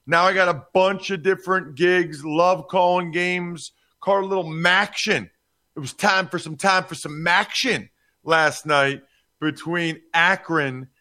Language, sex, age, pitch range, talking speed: English, male, 40-59, 145-185 Hz, 155 wpm